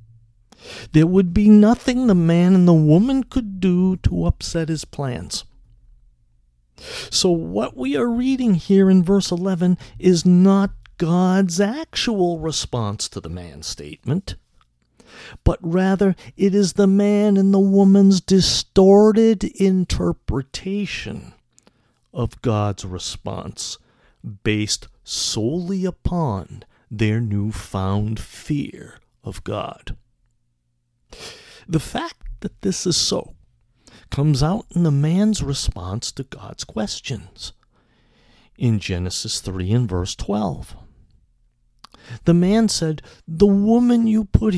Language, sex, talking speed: English, male, 110 wpm